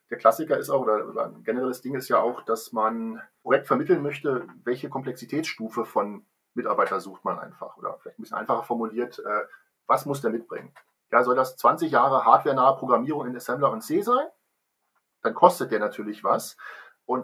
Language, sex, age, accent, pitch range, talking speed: German, male, 40-59, German, 120-155 Hz, 185 wpm